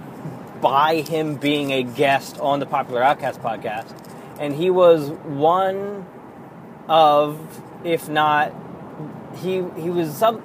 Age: 30-49